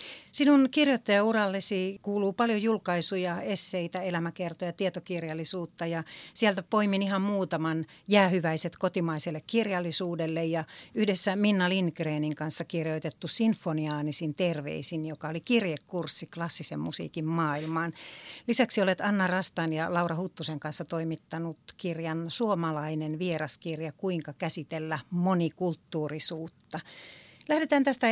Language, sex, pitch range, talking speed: Finnish, female, 160-200 Hz, 100 wpm